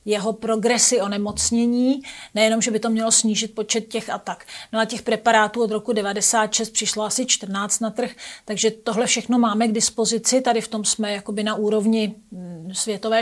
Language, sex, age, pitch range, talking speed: Czech, female, 40-59, 215-240 Hz, 180 wpm